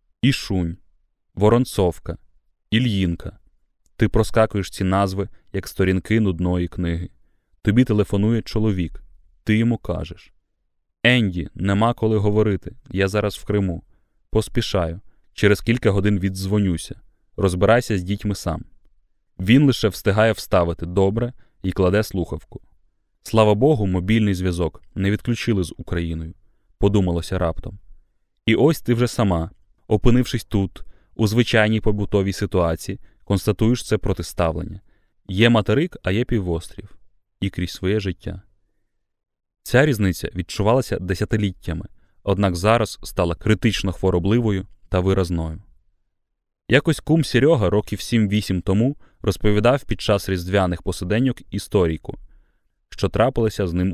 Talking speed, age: 115 wpm, 20-39